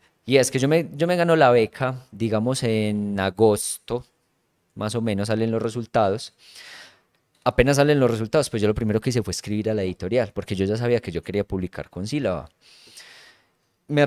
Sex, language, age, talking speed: male, Spanish, 20-39, 190 wpm